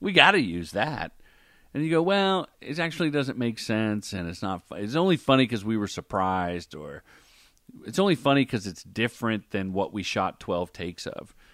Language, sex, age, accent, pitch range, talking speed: English, male, 40-59, American, 90-130 Hz, 200 wpm